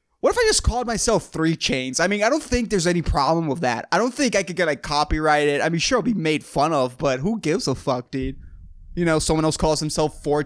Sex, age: male, 20-39